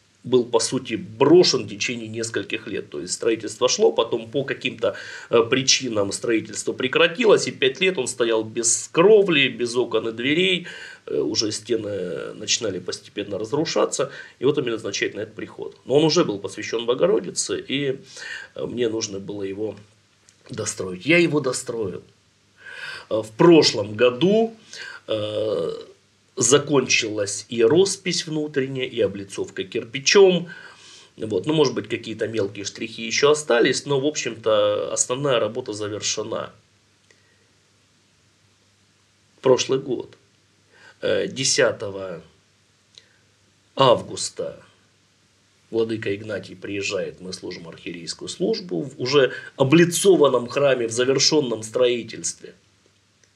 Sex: male